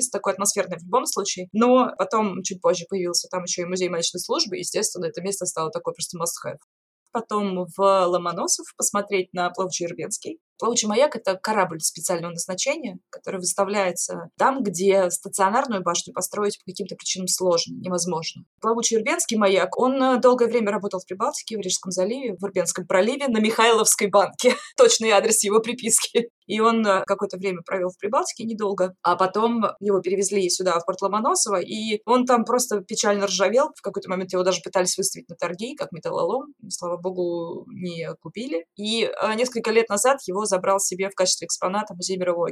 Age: 20-39